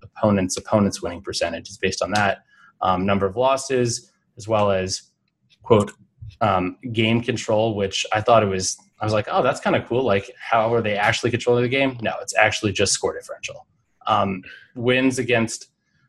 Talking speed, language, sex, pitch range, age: 185 wpm, English, male, 100-120 Hz, 20-39